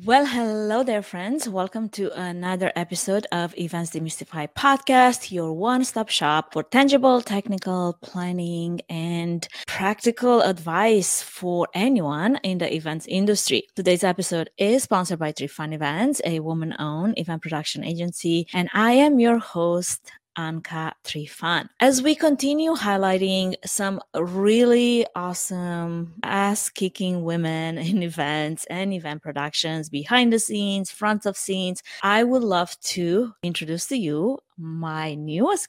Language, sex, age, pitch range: English, female, 20-39, 165-225 Hz